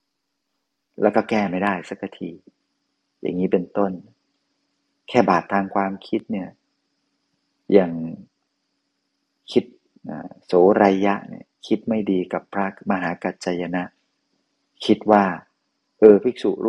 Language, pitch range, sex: Thai, 90-105 Hz, male